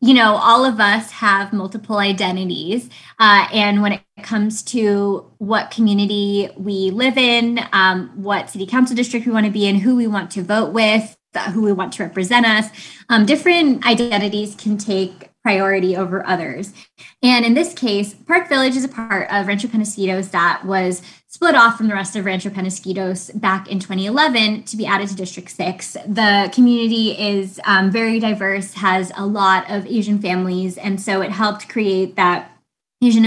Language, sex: English, female